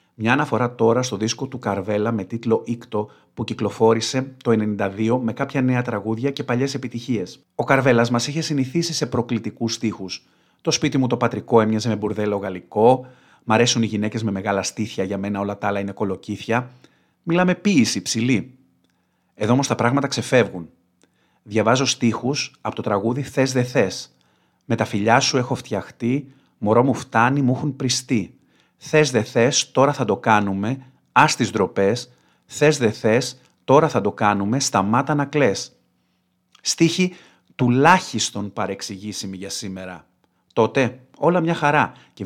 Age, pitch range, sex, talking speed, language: 40-59, 100-130 Hz, male, 165 wpm, Greek